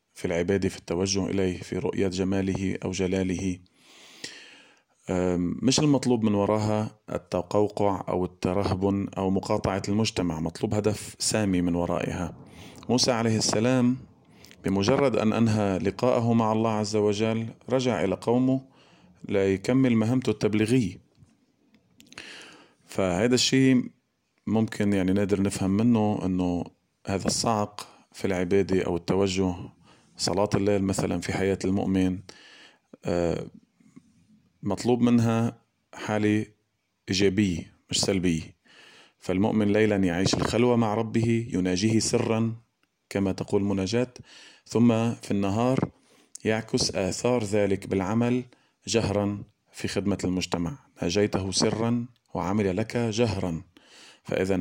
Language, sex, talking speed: Arabic, male, 105 wpm